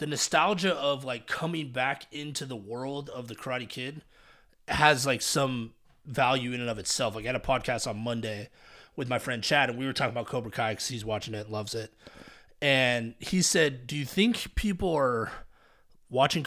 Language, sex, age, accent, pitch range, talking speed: English, male, 30-49, American, 120-150 Hz, 200 wpm